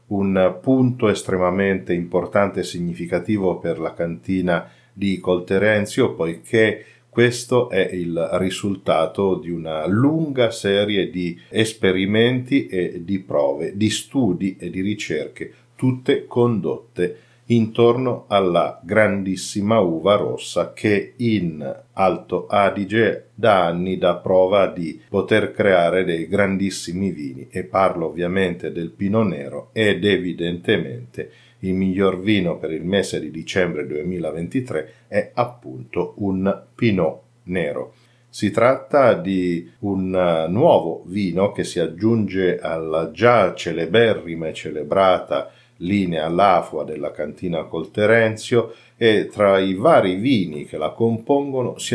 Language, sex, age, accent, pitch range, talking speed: Italian, male, 50-69, native, 90-115 Hz, 115 wpm